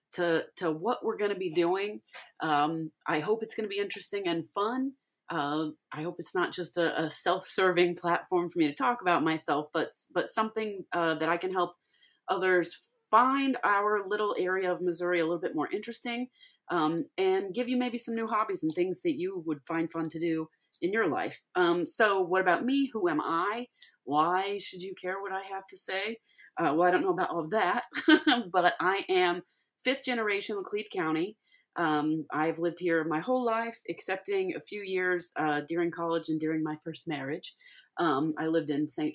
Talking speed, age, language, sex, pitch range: 200 wpm, 30-49, English, female, 165-230 Hz